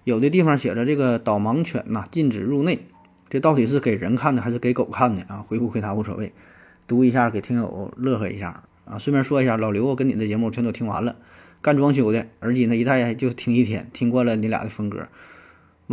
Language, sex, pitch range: Chinese, male, 105-125 Hz